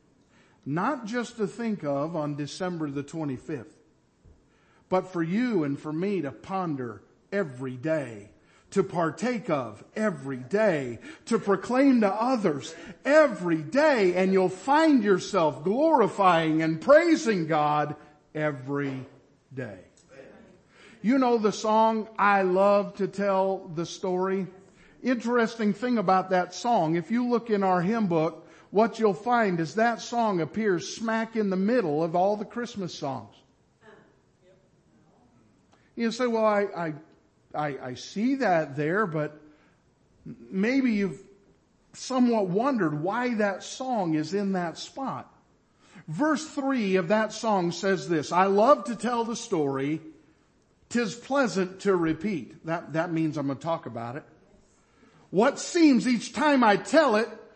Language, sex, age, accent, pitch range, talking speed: English, male, 50-69, American, 160-230 Hz, 140 wpm